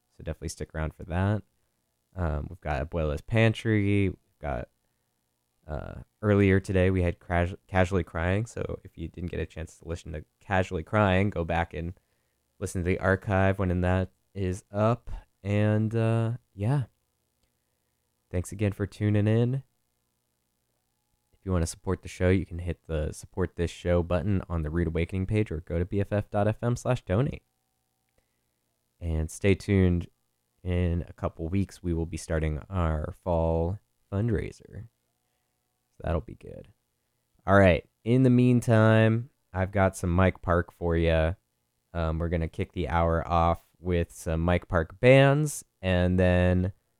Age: 20-39